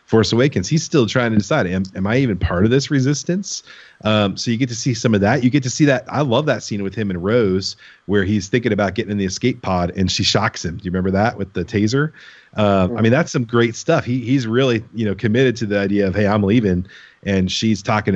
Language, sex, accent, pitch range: English, male, American, 95-115 Hz